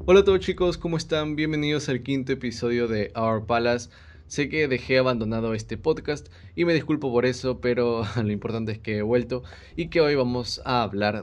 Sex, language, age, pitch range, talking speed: male, Spanish, 20-39, 100-120 Hz, 200 wpm